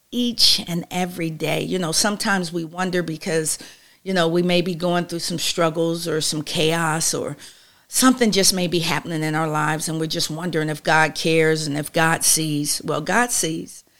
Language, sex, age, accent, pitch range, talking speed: English, female, 50-69, American, 155-185 Hz, 195 wpm